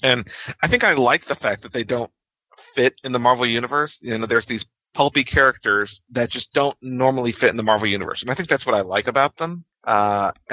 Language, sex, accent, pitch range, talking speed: English, male, American, 115-140 Hz, 230 wpm